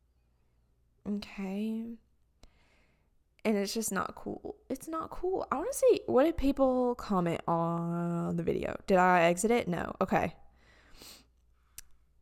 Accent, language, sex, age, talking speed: American, English, female, 20-39, 130 wpm